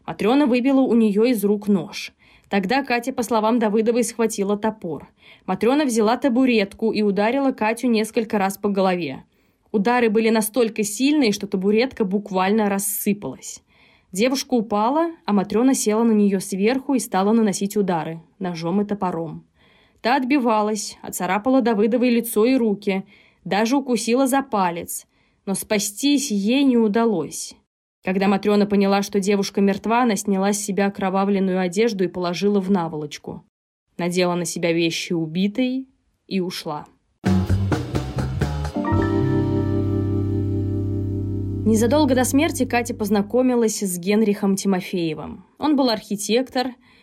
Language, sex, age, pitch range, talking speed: Russian, female, 20-39, 190-235 Hz, 125 wpm